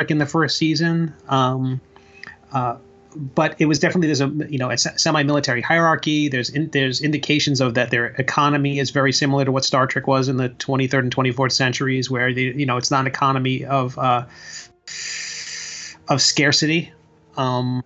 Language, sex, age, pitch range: English, male, 30-49, 135-165 Hz